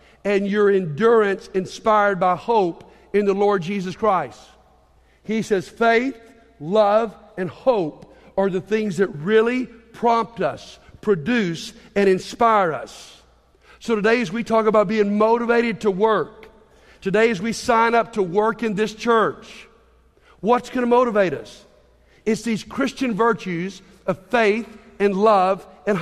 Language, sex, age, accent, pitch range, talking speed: English, male, 50-69, American, 180-220 Hz, 145 wpm